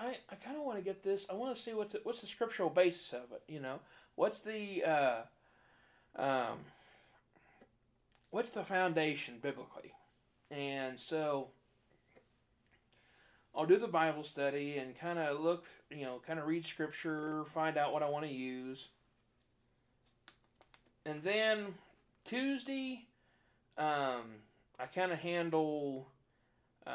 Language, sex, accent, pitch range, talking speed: English, male, American, 130-180 Hz, 135 wpm